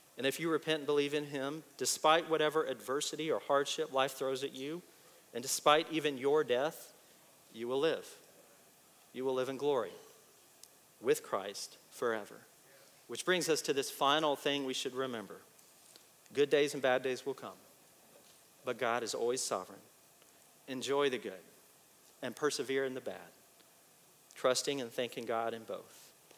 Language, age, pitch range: English, 40-59, 130-165 Hz